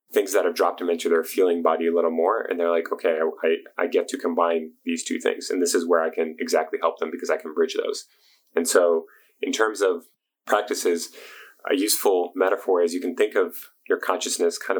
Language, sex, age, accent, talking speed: English, male, 30-49, American, 225 wpm